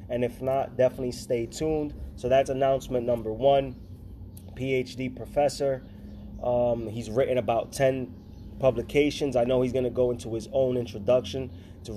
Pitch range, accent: 110-135 Hz, American